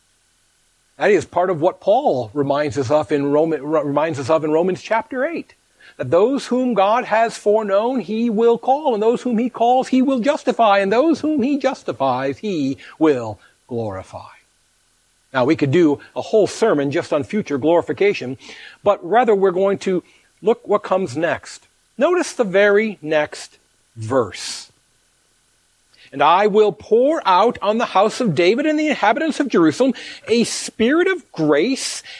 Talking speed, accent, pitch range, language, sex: 155 wpm, American, 150-235 Hz, English, male